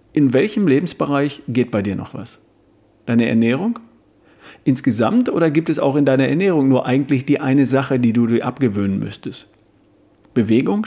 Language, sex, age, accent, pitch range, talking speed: German, male, 40-59, German, 115-150 Hz, 160 wpm